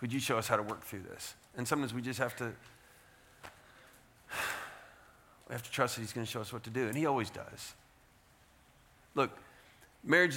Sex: male